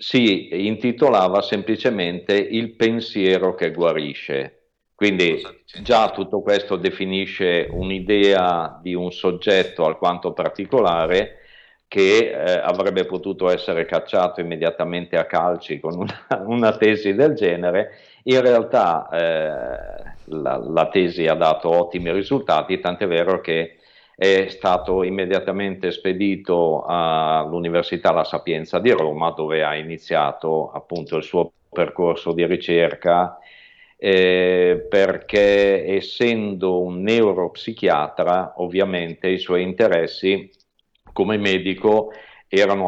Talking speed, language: 105 wpm, Italian